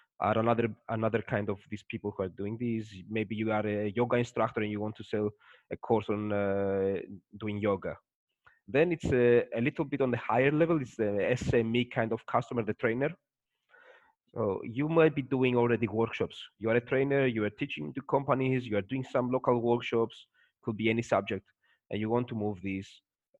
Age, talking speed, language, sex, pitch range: 20-39, 200 wpm, English, male, 105-120 Hz